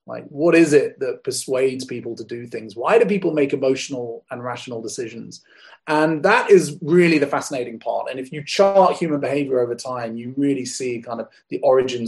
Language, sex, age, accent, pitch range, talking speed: English, male, 30-49, British, 125-165 Hz, 200 wpm